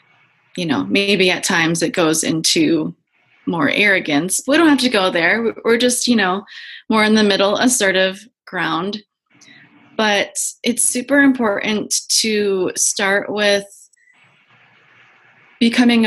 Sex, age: female, 20-39